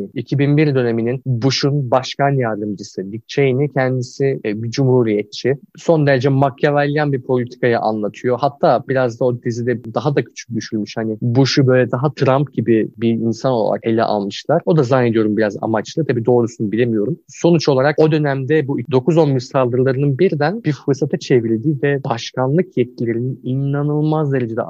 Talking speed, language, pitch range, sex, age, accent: 150 wpm, Turkish, 115-140 Hz, male, 30-49, native